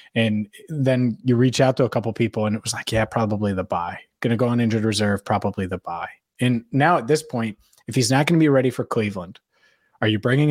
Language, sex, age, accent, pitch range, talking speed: English, male, 20-39, American, 115-135 Hz, 245 wpm